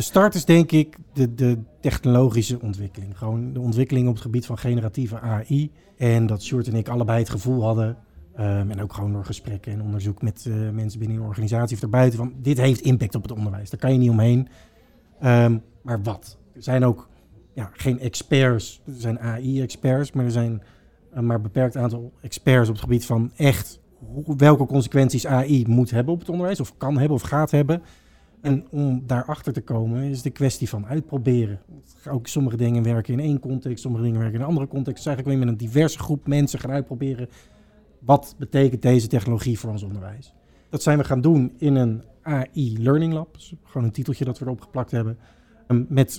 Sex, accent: male, Dutch